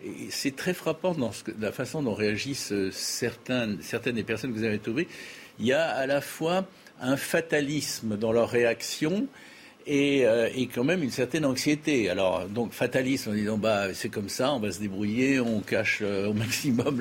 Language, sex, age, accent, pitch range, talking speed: French, male, 60-79, French, 105-145 Hz, 190 wpm